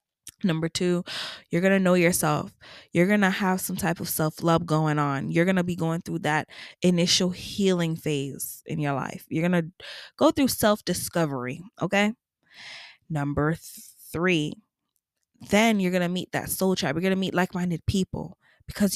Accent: American